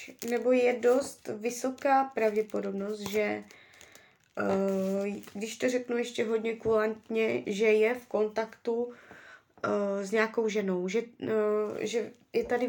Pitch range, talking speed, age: 200-245 Hz, 110 wpm, 20-39